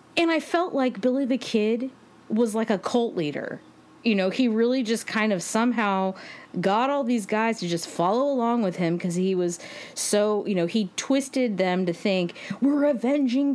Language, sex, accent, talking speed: English, female, American, 190 wpm